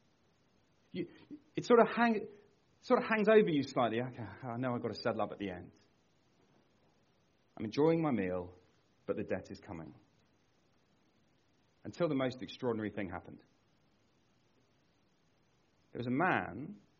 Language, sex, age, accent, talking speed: English, male, 40-59, British, 140 wpm